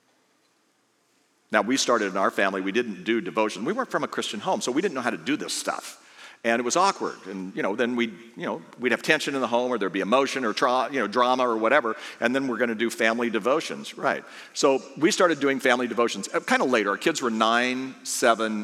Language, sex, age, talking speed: English, male, 50-69, 235 wpm